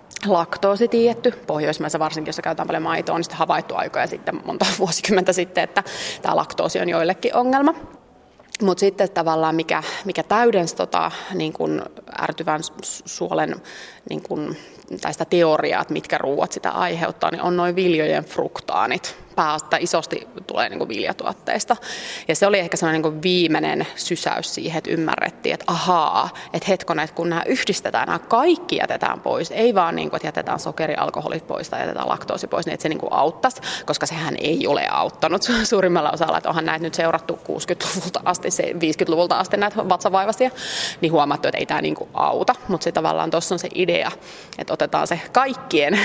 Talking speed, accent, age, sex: 165 wpm, native, 30-49, female